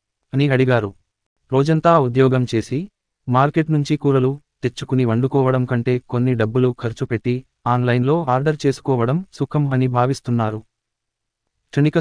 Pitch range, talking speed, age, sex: 115-140 Hz, 110 wpm, 30-49, male